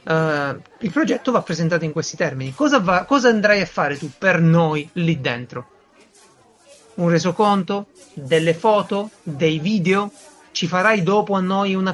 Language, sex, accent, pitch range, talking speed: Italian, male, native, 160-210 Hz, 145 wpm